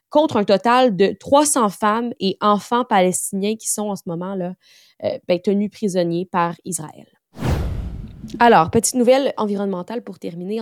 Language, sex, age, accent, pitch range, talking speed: French, female, 20-39, Canadian, 180-220 Hz, 140 wpm